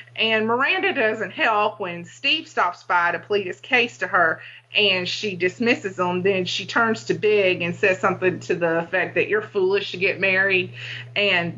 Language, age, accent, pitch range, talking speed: English, 30-49, American, 185-230 Hz, 185 wpm